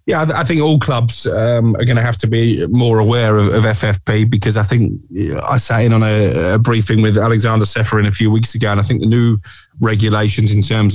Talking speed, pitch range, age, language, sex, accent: 230 wpm, 100-115 Hz, 20-39, English, male, British